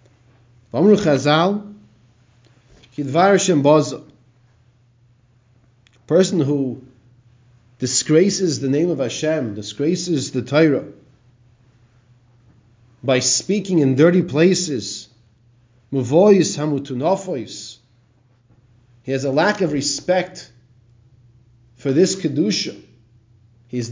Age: 40-59